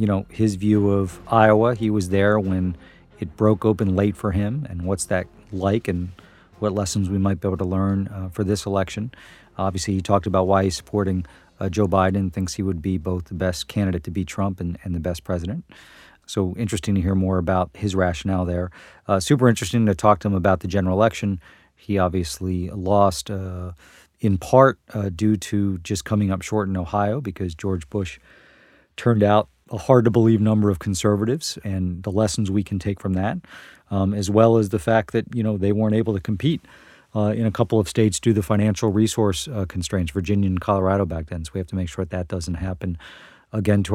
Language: English